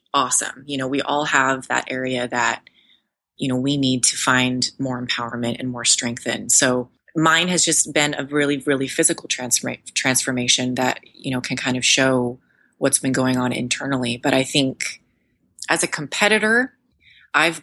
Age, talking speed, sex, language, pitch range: 30-49, 175 wpm, female, English, 130-150 Hz